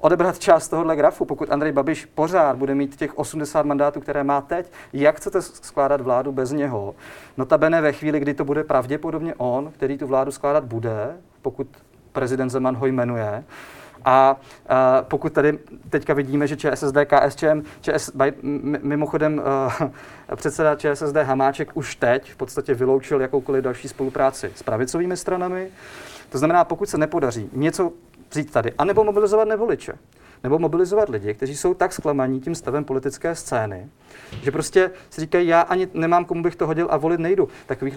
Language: Czech